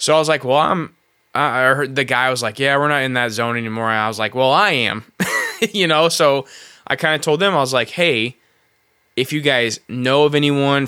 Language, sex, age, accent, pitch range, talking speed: English, male, 20-39, American, 115-140 Hz, 245 wpm